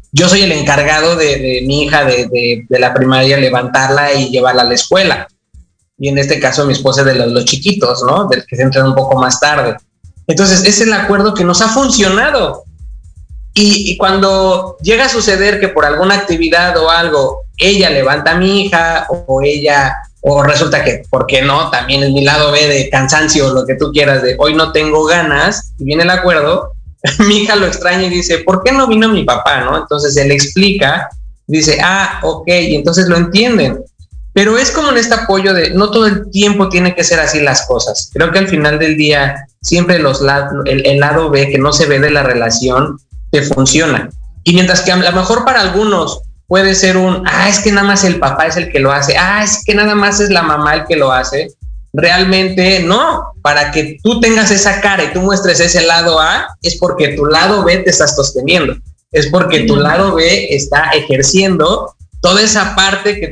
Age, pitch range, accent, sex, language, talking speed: 20-39, 140-190 Hz, Mexican, male, Spanish, 210 wpm